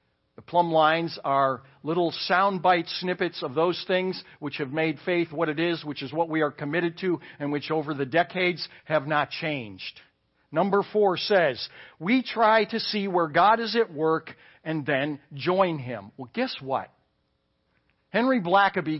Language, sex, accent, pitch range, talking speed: English, male, American, 150-220 Hz, 165 wpm